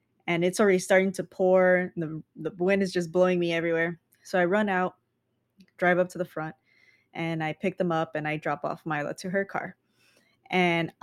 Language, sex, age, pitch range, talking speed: English, female, 20-39, 170-195 Hz, 200 wpm